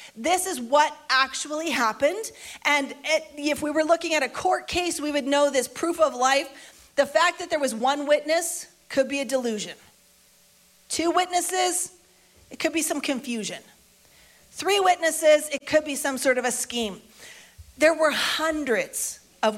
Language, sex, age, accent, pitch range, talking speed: English, female, 40-59, American, 220-310 Hz, 160 wpm